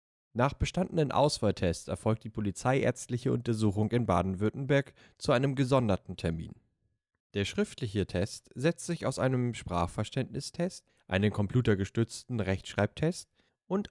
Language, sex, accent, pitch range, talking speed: German, male, German, 95-140 Hz, 110 wpm